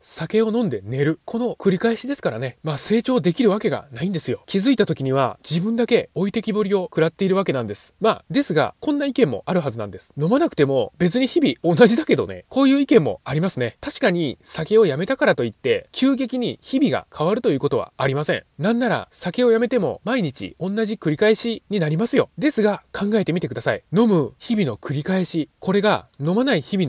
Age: 20-39